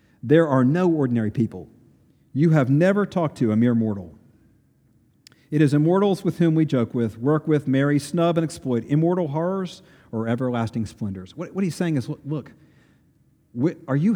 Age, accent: 50-69, American